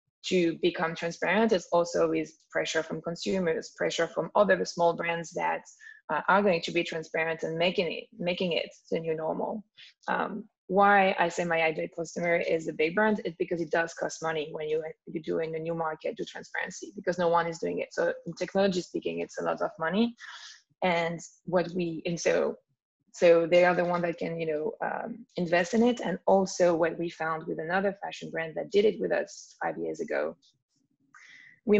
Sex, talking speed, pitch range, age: female, 200 wpm, 165-210 Hz, 20-39